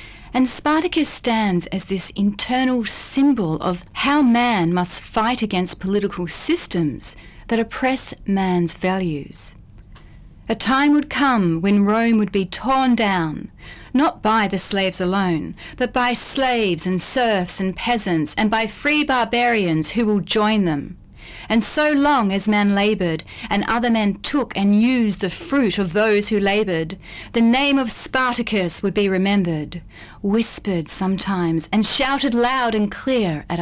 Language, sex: English, female